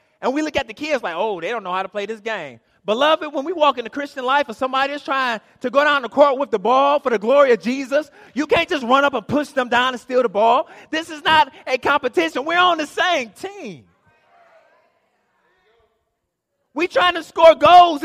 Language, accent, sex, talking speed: English, American, male, 230 wpm